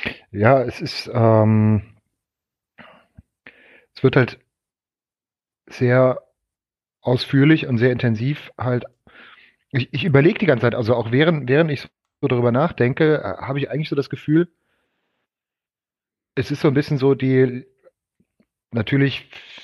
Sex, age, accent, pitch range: male, 30-49, German, 120-155 Hz